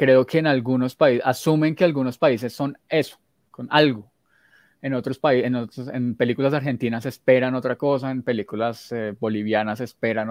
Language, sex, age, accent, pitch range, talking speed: Spanish, male, 20-39, Colombian, 115-135 Hz, 170 wpm